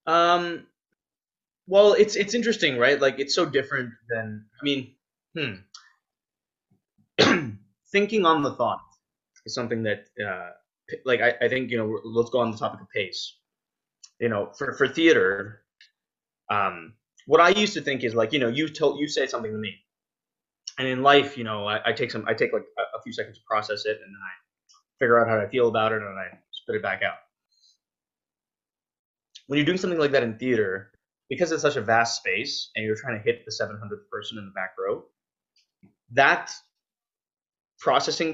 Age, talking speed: 20-39, 190 wpm